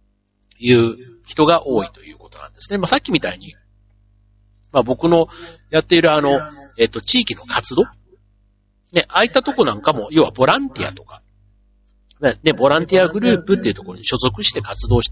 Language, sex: Japanese, male